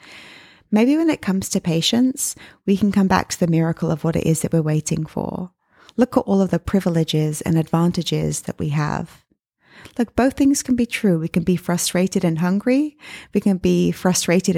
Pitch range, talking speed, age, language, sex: 160-205 Hz, 200 wpm, 20-39, English, female